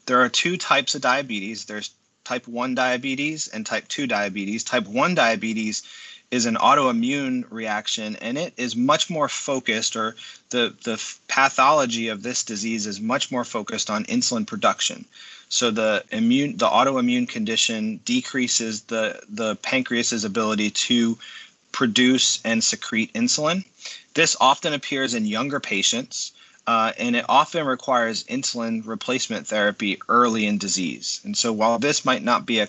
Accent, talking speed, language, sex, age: American, 150 wpm, English, male, 30-49